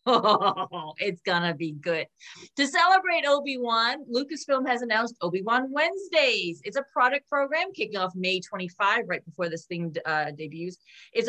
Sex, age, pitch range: female, 30-49, 185-250 Hz